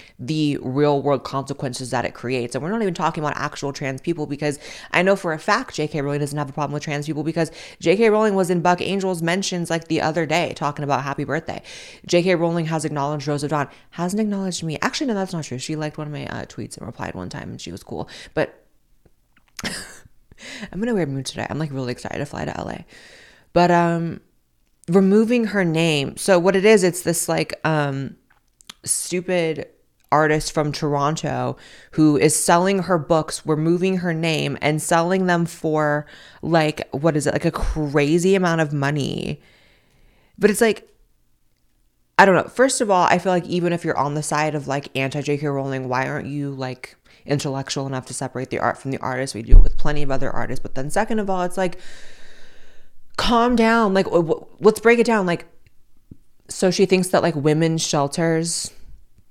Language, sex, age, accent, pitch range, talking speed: English, female, 20-39, American, 145-180 Hz, 200 wpm